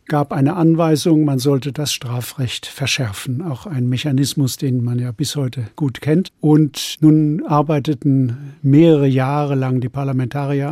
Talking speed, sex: 145 wpm, male